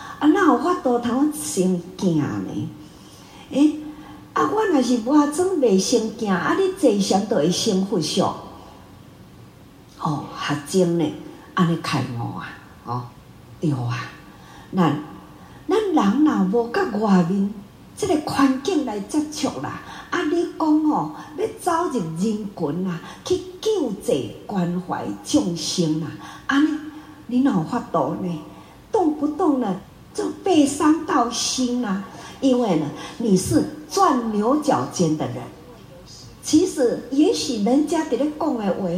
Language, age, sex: Chinese, 50-69, female